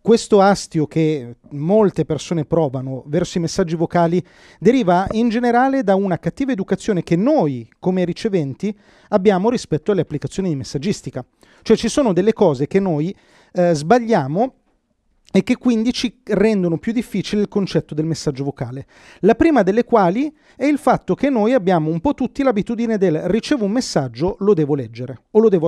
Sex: male